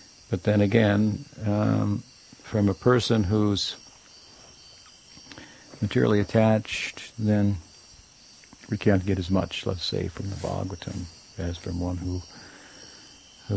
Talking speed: 115 wpm